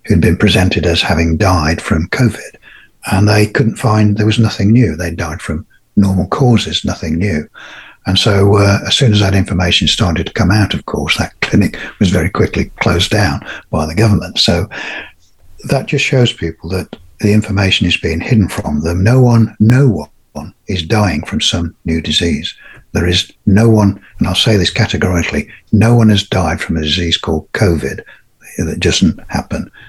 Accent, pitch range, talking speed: British, 85-110 Hz, 185 wpm